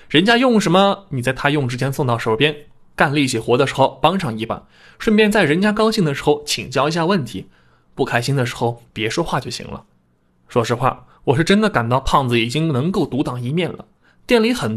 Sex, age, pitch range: male, 20-39, 115-155 Hz